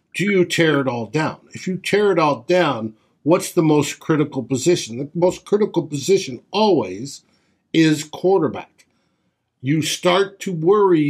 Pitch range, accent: 120-170 Hz, American